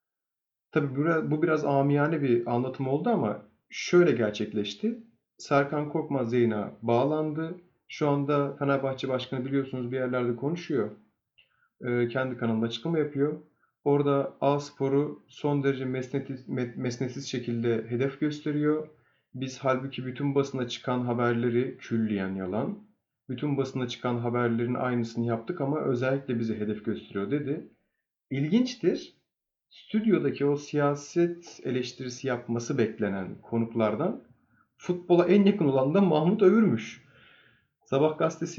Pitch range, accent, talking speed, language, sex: 120-150 Hz, native, 110 wpm, Turkish, male